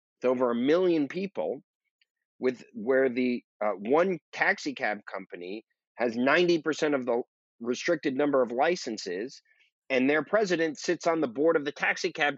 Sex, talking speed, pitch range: male, 150 wpm, 125-175 Hz